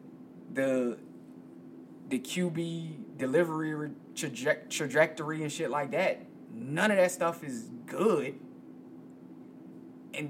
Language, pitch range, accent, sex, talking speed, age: English, 140-170 Hz, American, male, 100 wpm, 20-39